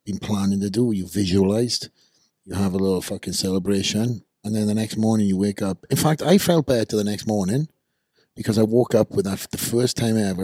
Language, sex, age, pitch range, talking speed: English, male, 30-49, 90-115 Hz, 230 wpm